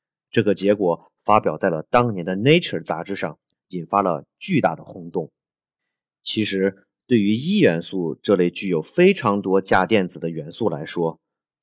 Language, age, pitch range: Chinese, 30-49, 90-125 Hz